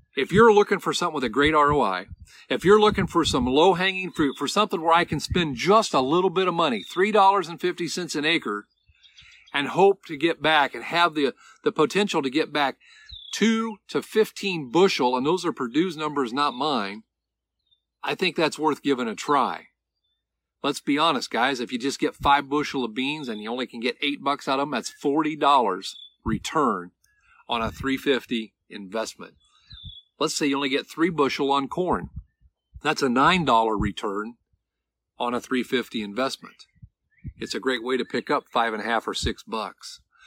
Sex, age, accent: male, 50-69, American